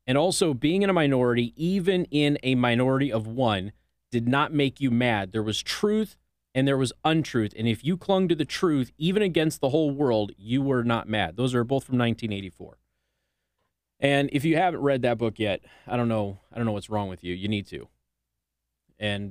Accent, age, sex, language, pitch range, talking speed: American, 30-49, male, English, 105-140 Hz, 210 wpm